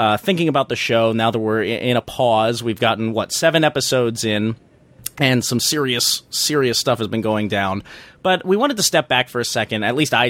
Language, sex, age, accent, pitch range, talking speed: English, male, 30-49, American, 110-155 Hz, 220 wpm